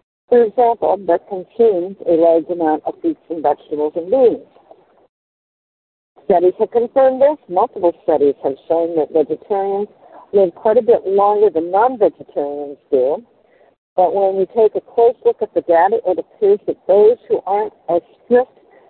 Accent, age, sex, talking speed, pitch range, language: American, 50-69, female, 155 wpm, 165-240 Hz, English